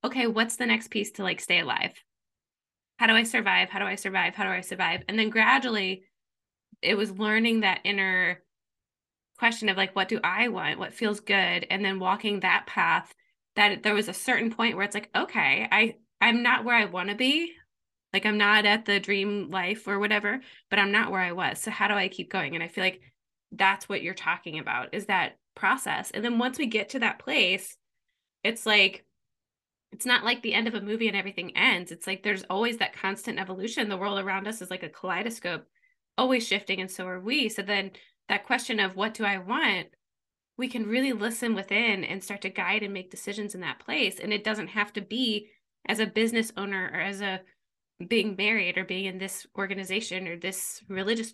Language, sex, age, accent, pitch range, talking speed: English, female, 20-39, American, 195-230 Hz, 215 wpm